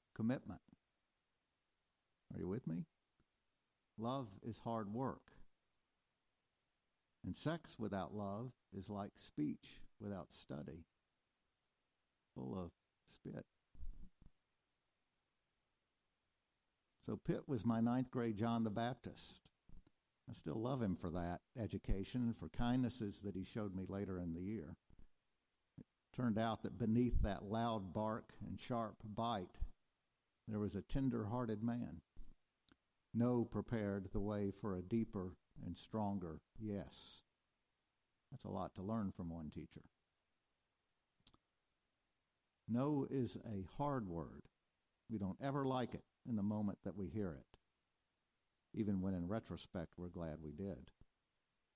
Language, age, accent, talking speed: English, 50-69, American, 125 wpm